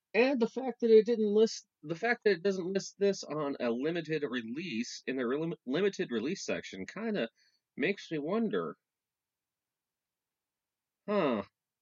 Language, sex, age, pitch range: English, male, 30-49, 125-200 Hz